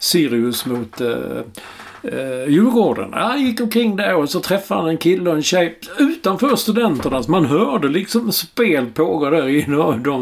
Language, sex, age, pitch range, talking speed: English, male, 50-69, 140-200 Hz, 170 wpm